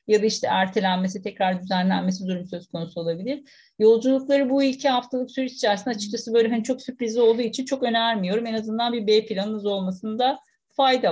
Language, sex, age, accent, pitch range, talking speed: Turkish, female, 50-69, native, 180-230 Hz, 175 wpm